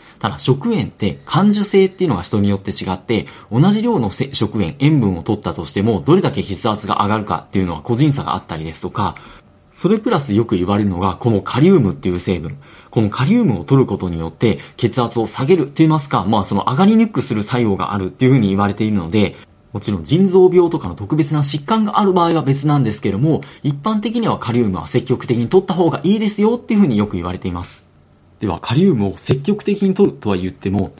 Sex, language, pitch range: male, Japanese, 100-160 Hz